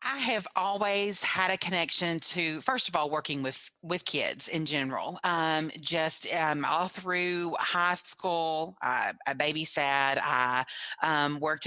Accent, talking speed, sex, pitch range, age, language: American, 145 wpm, female, 150-175 Hz, 30-49, English